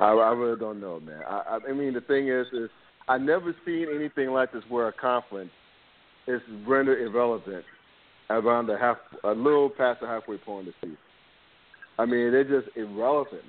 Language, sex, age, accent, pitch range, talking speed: English, male, 50-69, American, 120-160 Hz, 180 wpm